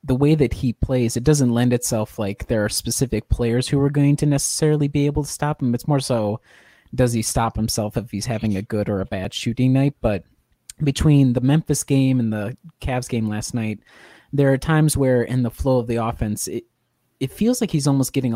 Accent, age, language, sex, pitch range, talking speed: American, 30-49, English, male, 110-130 Hz, 225 wpm